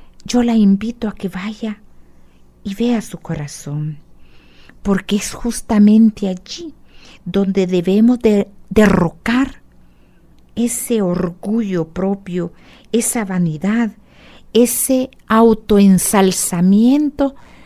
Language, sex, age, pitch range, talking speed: Spanish, female, 50-69, 170-220 Hz, 80 wpm